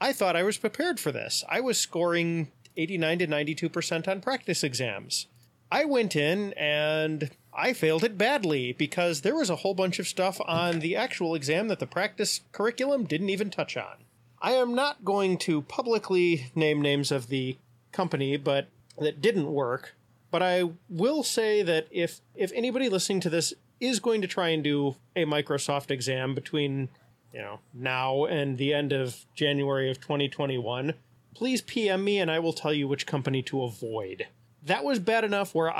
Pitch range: 140-195 Hz